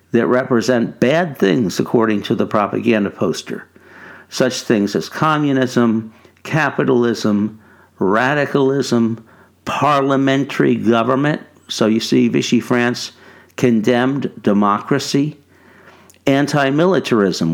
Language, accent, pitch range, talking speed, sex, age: English, American, 105-135 Hz, 85 wpm, male, 60-79